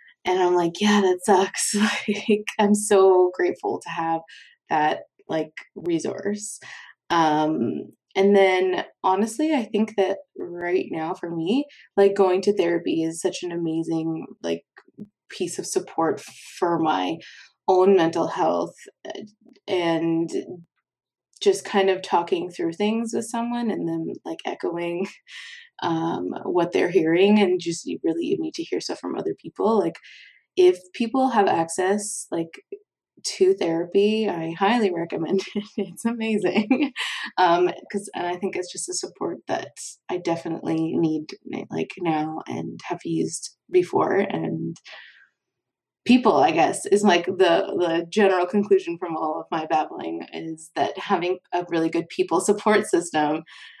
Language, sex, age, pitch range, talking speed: English, female, 20-39, 170-230 Hz, 145 wpm